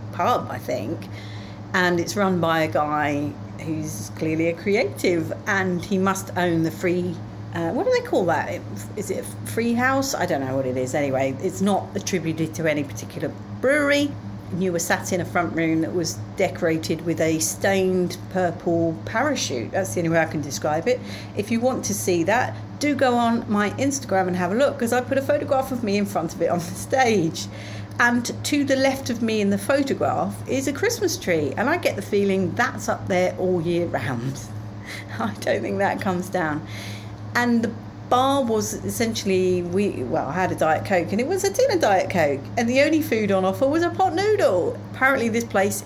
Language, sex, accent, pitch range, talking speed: English, female, British, 145-235 Hz, 205 wpm